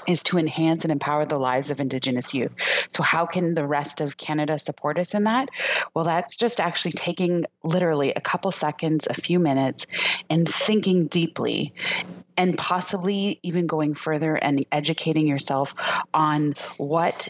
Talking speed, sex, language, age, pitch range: 160 wpm, female, English, 30-49, 145-175 Hz